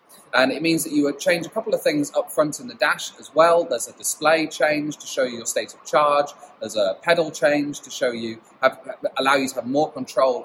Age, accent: 30-49, British